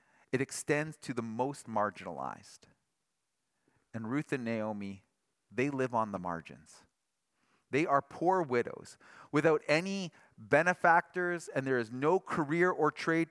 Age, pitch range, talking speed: 30-49, 125-185 Hz, 130 wpm